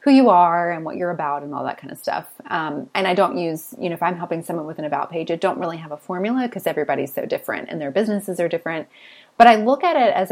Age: 30-49